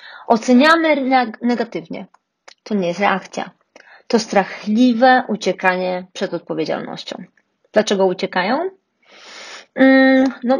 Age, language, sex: 30-49, Polish, female